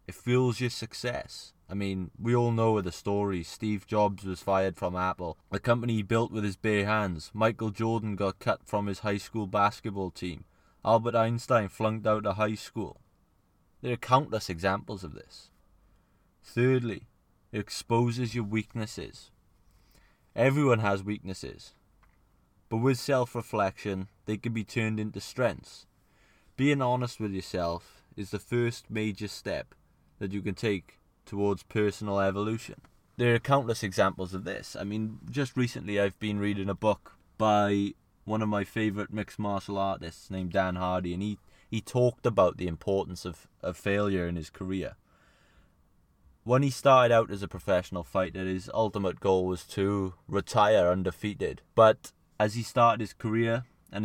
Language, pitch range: English, 95-115 Hz